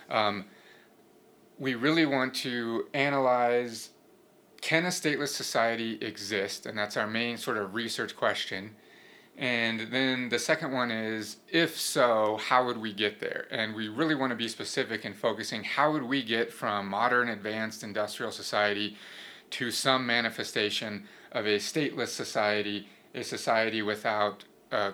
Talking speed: 145 wpm